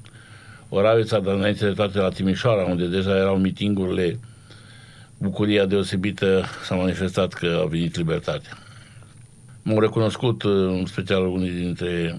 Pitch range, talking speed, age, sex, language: 90-115 Hz, 125 wpm, 60-79, male, Romanian